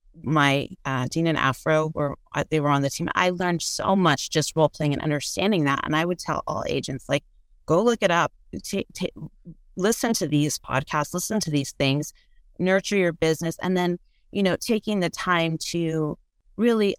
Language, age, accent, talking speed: English, 30-49, American, 190 wpm